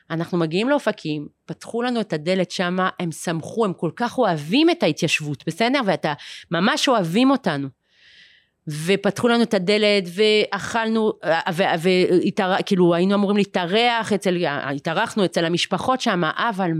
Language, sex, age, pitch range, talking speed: Hebrew, female, 30-49, 175-240 Hz, 140 wpm